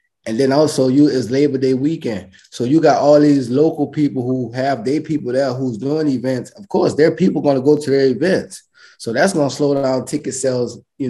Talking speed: 225 wpm